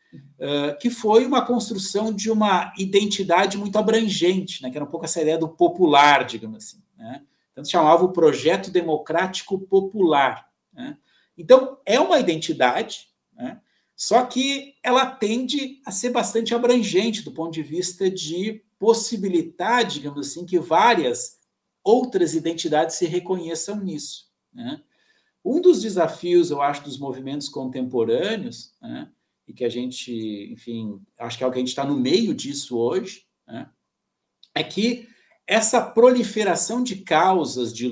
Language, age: Portuguese, 50-69